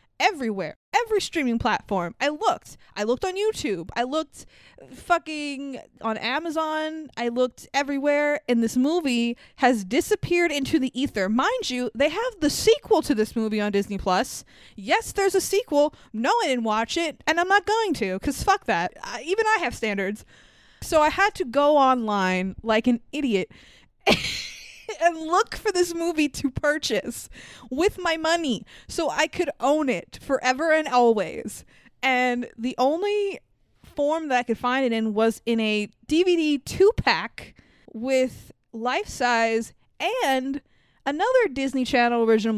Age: 20-39